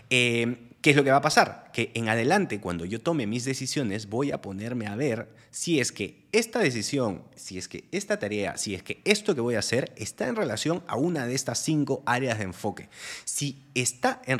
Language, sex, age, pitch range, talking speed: Spanish, male, 30-49, 95-125 Hz, 220 wpm